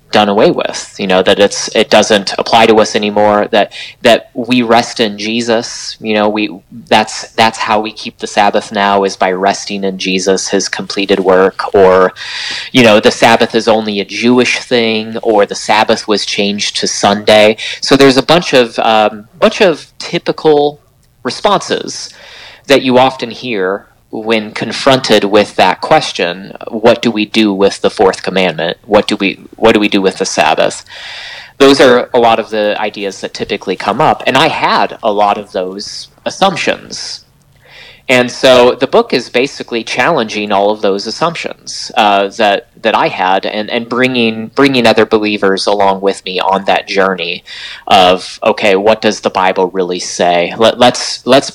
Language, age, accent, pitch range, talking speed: English, 30-49, American, 100-120 Hz, 175 wpm